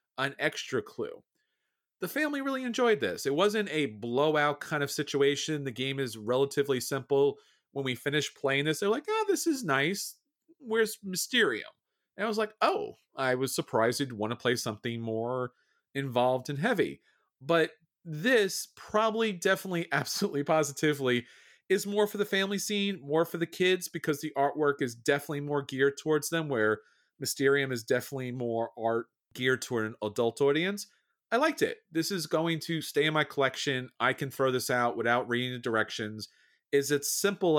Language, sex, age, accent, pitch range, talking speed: English, male, 40-59, American, 125-190 Hz, 175 wpm